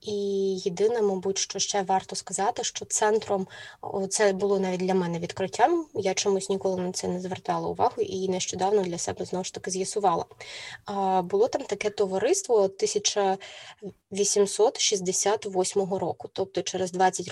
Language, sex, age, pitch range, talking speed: Ukrainian, female, 20-39, 190-220 Hz, 140 wpm